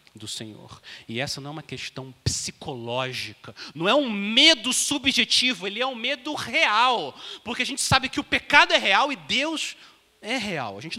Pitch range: 200-290 Hz